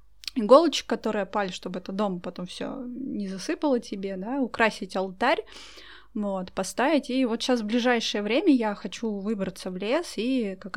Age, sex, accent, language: 20-39, female, native, Russian